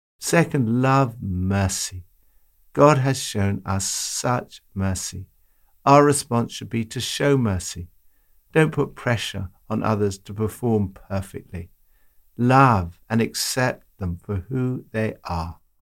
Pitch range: 90-120 Hz